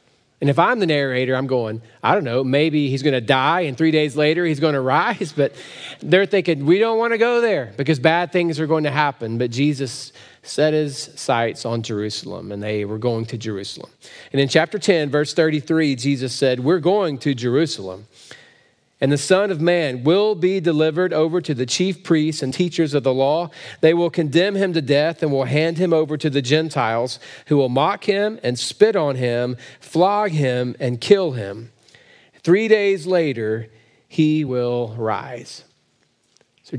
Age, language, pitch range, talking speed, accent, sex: 40-59, English, 125-175 Hz, 185 wpm, American, male